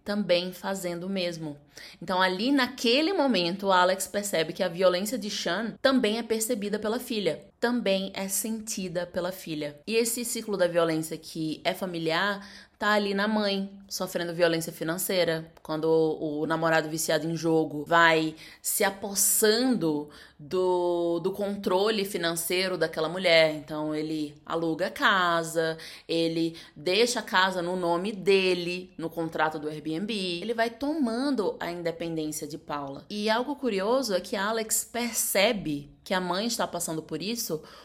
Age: 20-39